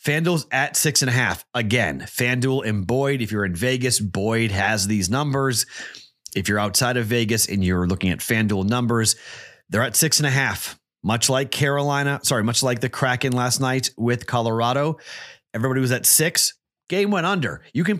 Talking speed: 185 wpm